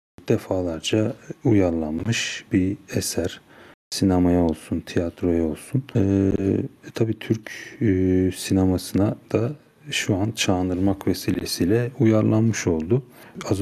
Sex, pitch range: male, 90-110 Hz